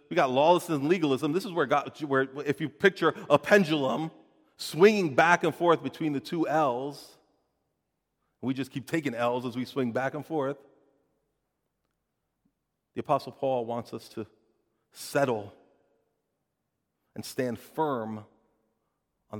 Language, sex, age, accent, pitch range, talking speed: English, male, 40-59, American, 105-145 Hz, 140 wpm